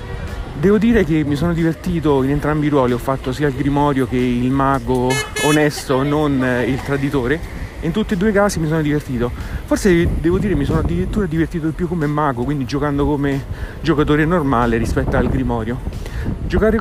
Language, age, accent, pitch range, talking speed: Italian, 30-49, native, 135-170 Hz, 190 wpm